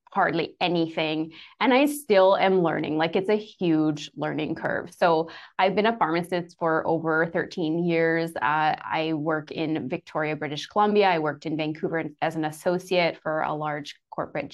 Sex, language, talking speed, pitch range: female, English, 165 wpm, 160-185 Hz